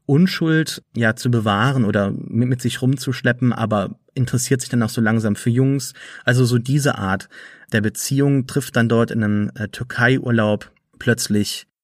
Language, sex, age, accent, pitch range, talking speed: German, male, 30-49, German, 105-125 Hz, 160 wpm